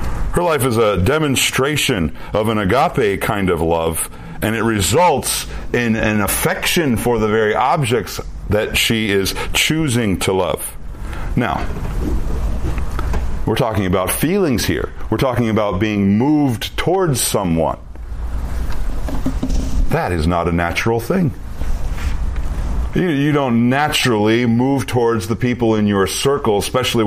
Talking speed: 125 wpm